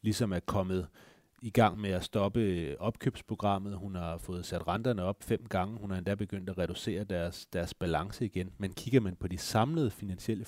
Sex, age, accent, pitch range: male, 30-49, native, 85-105 Hz